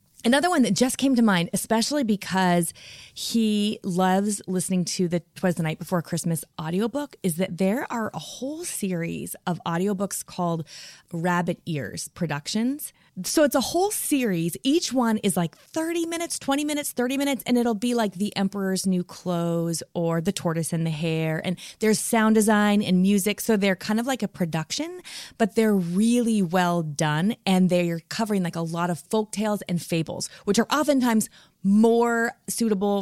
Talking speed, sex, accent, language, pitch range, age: 175 wpm, female, American, English, 175-230 Hz, 20-39